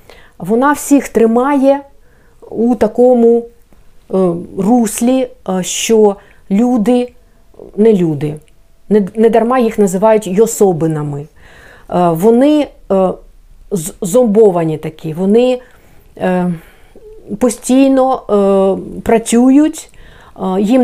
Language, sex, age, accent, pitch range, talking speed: Ukrainian, female, 50-69, native, 190-250 Hz, 85 wpm